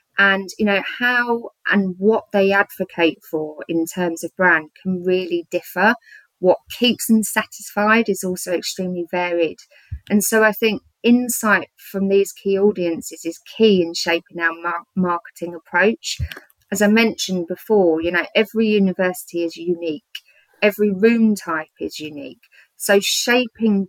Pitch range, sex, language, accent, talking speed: 175-210 Hz, female, English, British, 145 wpm